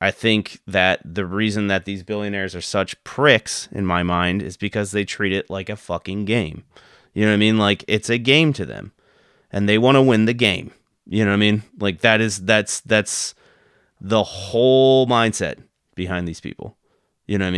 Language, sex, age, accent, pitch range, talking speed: English, male, 30-49, American, 95-120 Hz, 205 wpm